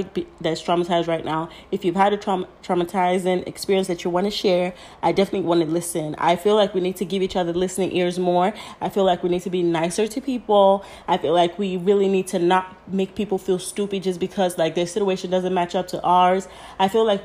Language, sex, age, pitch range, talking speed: English, female, 30-49, 165-190 Hz, 235 wpm